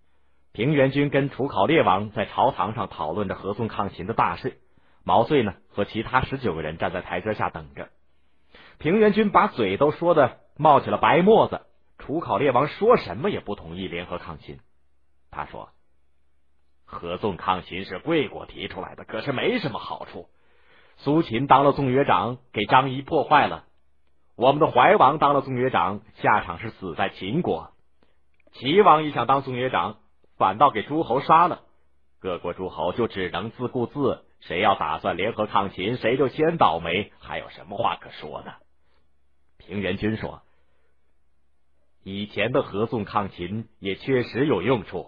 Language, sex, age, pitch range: Chinese, male, 30-49, 75-130 Hz